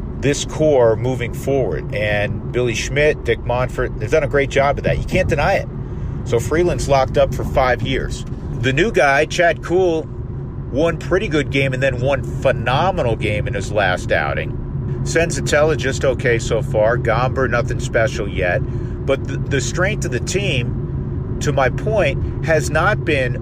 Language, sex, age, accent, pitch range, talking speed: English, male, 50-69, American, 115-140 Hz, 170 wpm